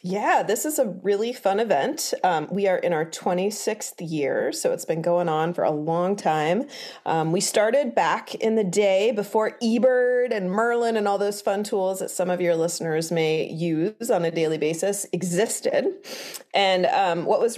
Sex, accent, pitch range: female, American, 175-245 Hz